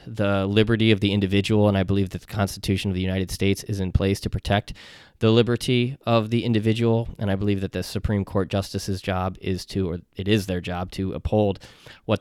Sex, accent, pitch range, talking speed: male, American, 95-110 Hz, 215 wpm